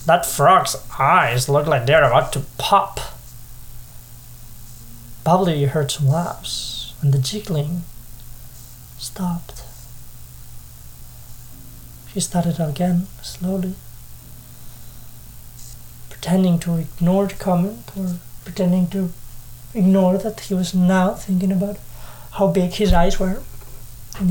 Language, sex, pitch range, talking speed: English, male, 120-185 Hz, 105 wpm